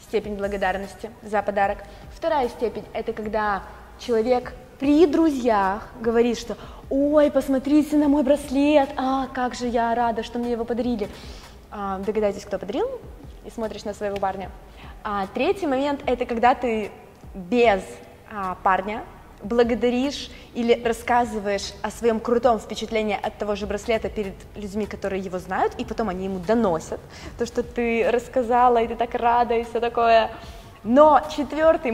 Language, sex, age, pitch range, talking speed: Russian, female, 20-39, 210-265 Hz, 145 wpm